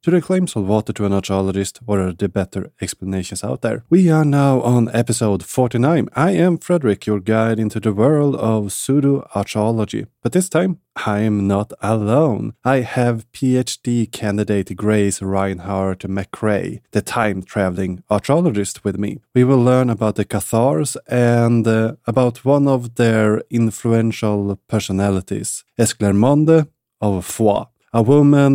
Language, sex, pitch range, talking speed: English, male, 100-125 Hz, 145 wpm